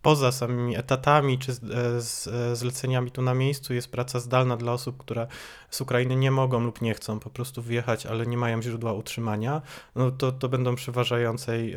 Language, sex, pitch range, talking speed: Polish, male, 115-135 Hz, 185 wpm